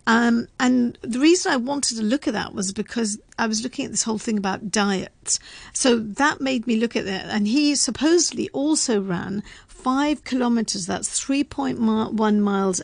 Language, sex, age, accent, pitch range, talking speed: English, female, 50-69, British, 200-255 Hz, 180 wpm